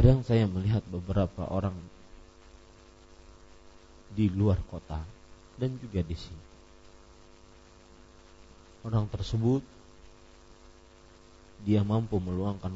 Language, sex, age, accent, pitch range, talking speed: English, male, 40-59, Indonesian, 90-95 Hz, 80 wpm